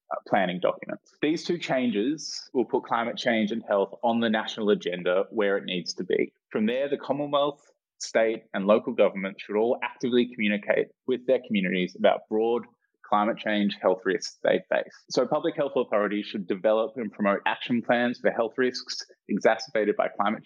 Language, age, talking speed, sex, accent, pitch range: English, 20-39, 175 wpm, male, Australian, 105-125 Hz